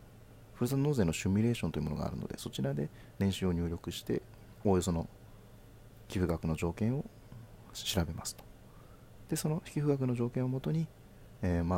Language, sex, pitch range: Japanese, male, 90-120 Hz